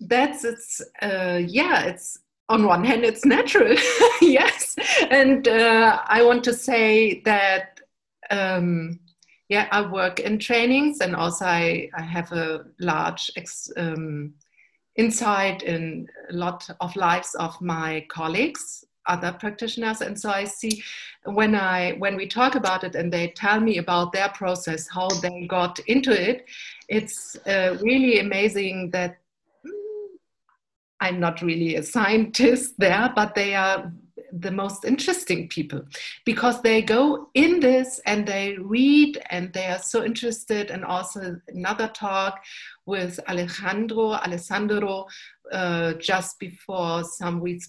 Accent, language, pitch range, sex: German, German, 180-235 Hz, female